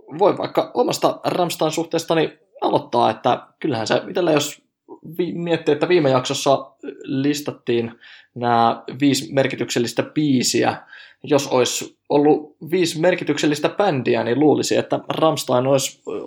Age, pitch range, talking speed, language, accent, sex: 20-39, 120-145 Hz, 115 wpm, Finnish, native, male